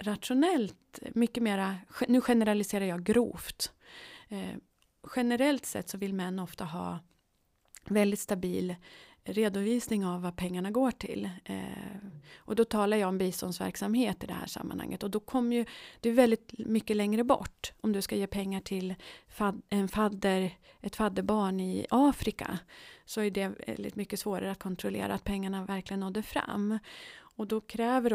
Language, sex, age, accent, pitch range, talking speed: Swedish, female, 30-49, native, 185-220 Hz, 150 wpm